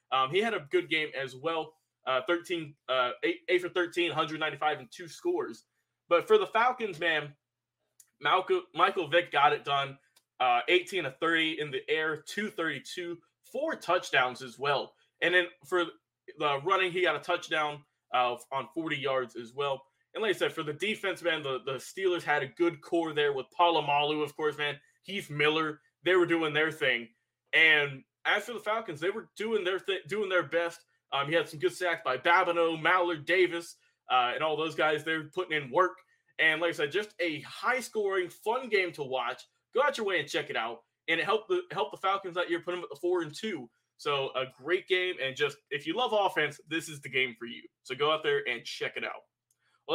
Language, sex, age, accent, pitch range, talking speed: English, male, 20-39, American, 145-190 Hz, 215 wpm